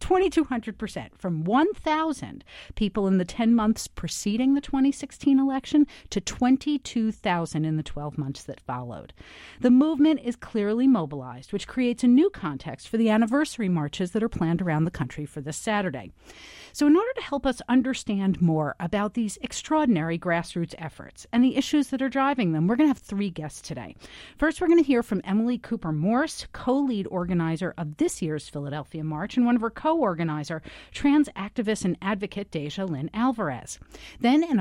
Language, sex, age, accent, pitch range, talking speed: English, female, 40-59, American, 180-265 Hz, 175 wpm